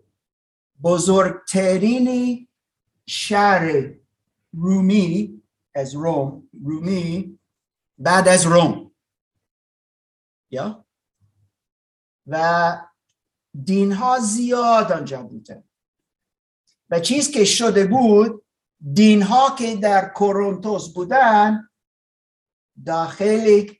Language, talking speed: Persian, 65 wpm